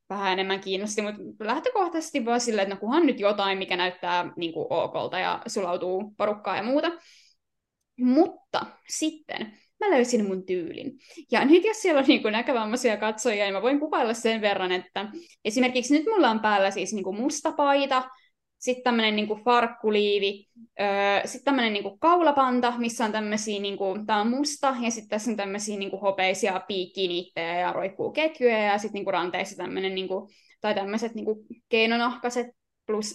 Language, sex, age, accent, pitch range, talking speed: Finnish, female, 20-39, native, 205-270 Hz, 165 wpm